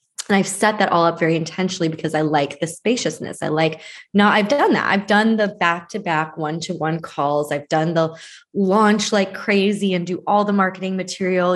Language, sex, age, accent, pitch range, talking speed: English, female, 20-39, American, 155-185 Hz, 190 wpm